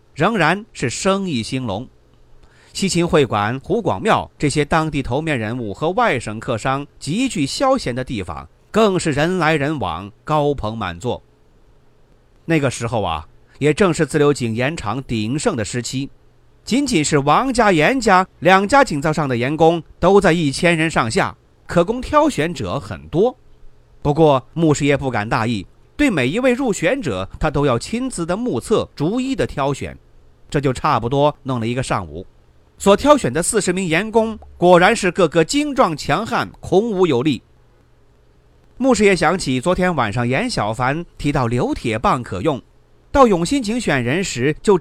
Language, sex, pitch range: Chinese, male, 125-190 Hz